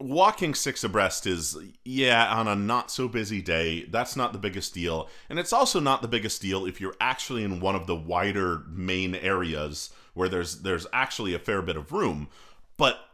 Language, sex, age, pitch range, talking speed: English, male, 30-49, 85-130 Hz, 185 wpm